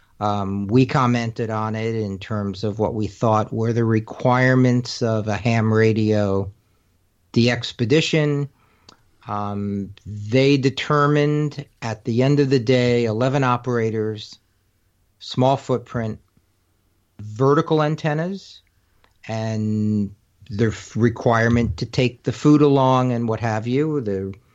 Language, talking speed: English, 115 wpm